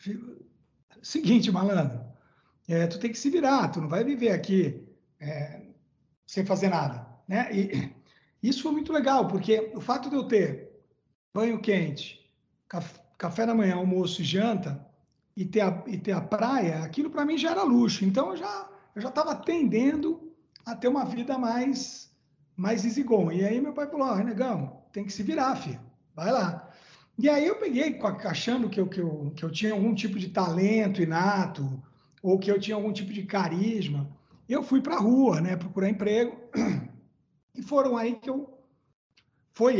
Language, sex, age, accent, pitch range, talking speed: Portuguese, male, 60-79, Brazilian, 175-240 Hz, 175 wpm